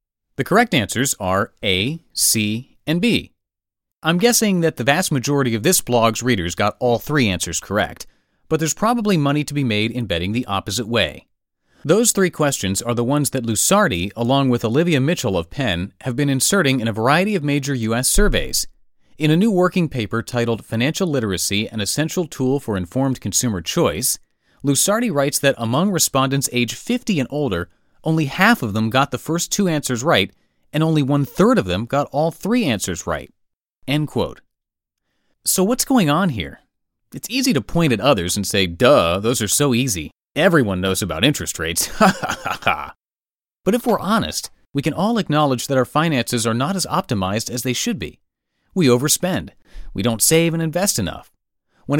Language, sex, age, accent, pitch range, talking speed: English, male, 30-49, American, 110-160 Hz, 185 wpm